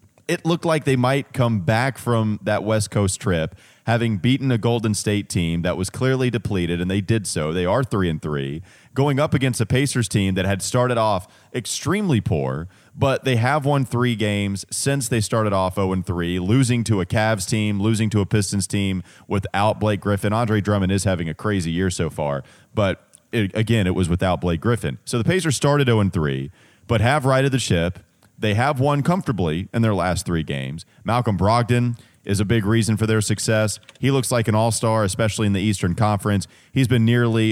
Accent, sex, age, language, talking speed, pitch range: American, male, 30-49, English, 205 wpm, 95-120 Hz